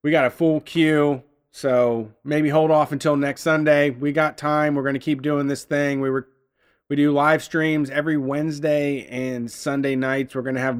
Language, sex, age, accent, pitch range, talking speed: English, male, 30-49, American, 130-150 Hz, 205 wpm